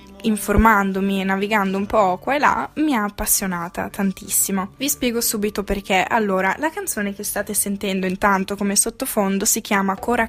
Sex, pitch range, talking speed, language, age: female, 200-240 Hz, 165 wpm, Italian, 10-29